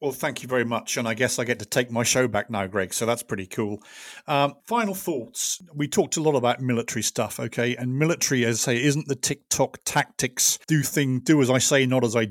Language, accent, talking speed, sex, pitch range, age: English, British, 245 wpm, male, 120-165 Hz, 40-59